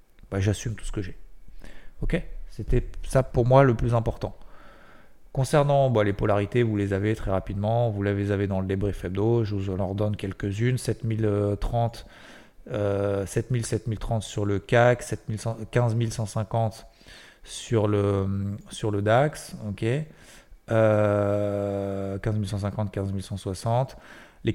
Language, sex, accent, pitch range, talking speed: French, male, French, 100-120 Hz, 120 wpm